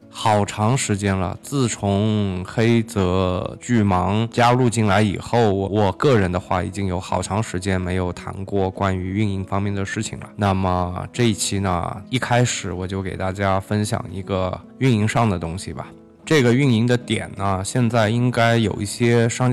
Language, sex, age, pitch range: Chinese, male, 20-39, 95-115 Hz